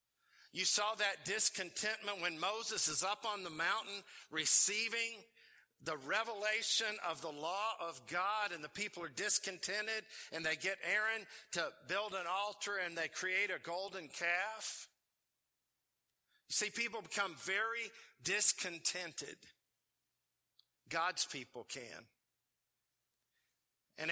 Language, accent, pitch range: English, American, 185-220 Hz